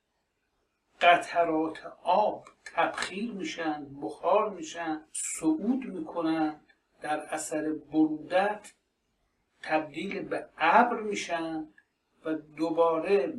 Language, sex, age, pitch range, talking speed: Persian, male, 60-79, 155-225 Hz, 75 wpm